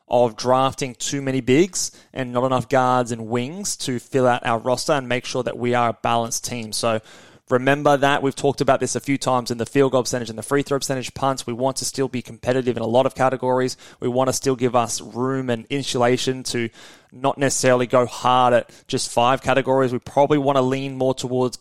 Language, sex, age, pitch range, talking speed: English, male, 20-39, 120-135 Hz, 230 wpm